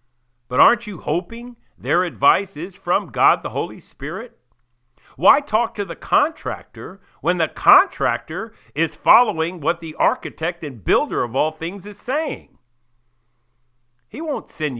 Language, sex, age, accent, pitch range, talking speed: English, male, 50-69, American, 120-185 Hz, 140 wpm